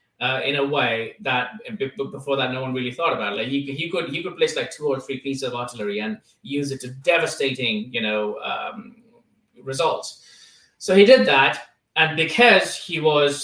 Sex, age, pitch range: male, 20-39, 130-180 Hz